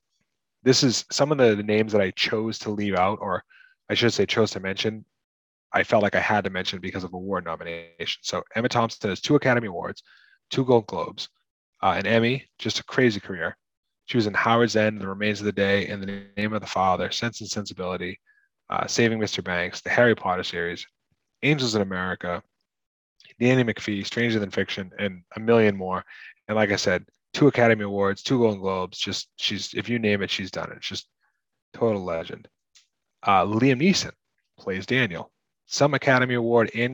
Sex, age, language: male, 20-39, English